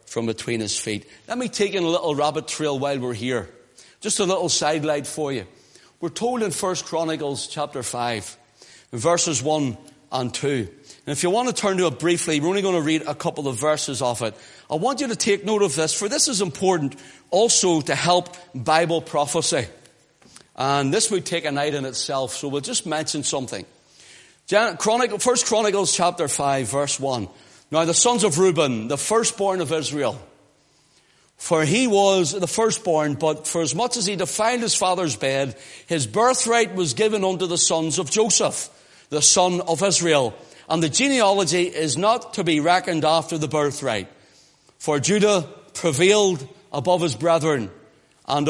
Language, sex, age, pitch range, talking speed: English, male, 40-59, 145-195 Hz, 180 wpm